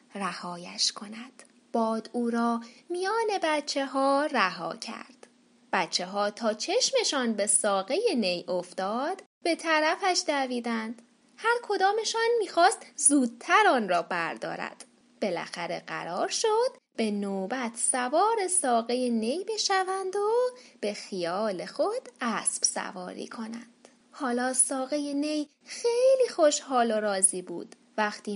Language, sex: Persian, female